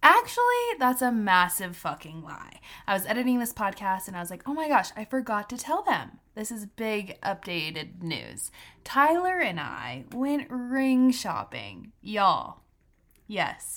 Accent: American